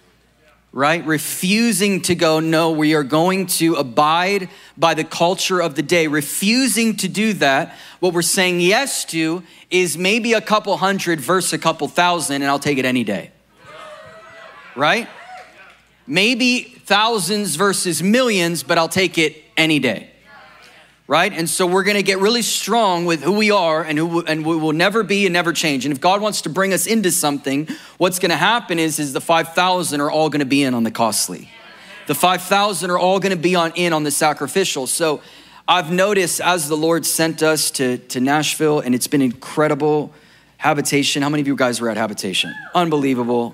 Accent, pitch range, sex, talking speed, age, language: American, 150-185 Hz, male, 185 wpm, 30-49, English